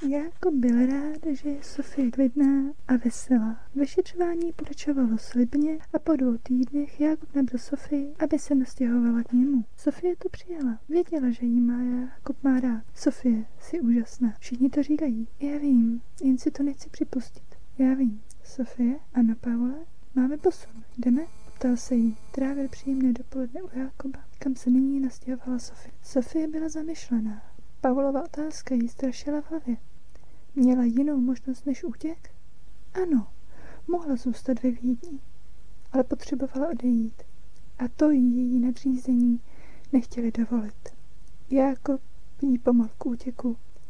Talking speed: 140 wpm